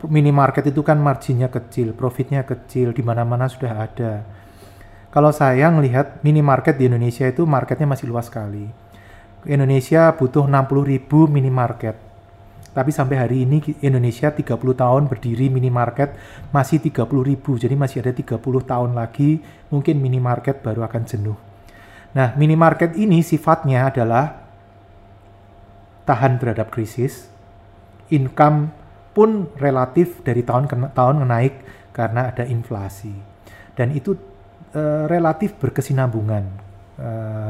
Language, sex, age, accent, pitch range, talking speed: Indonesian, male, 30-49, native, 110-140 Hz, 115 wpm